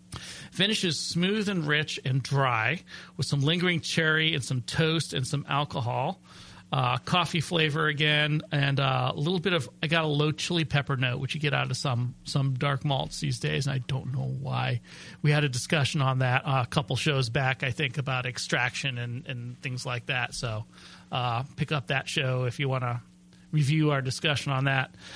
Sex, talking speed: male, 205 wpm